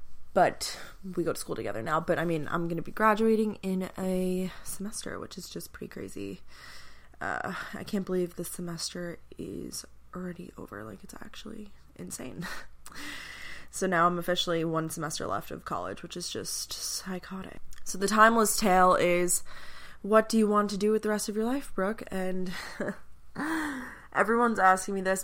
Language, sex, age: English, female, 20-39